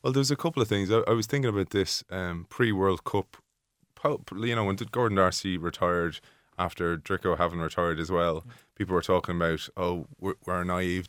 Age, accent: 20-39, Irish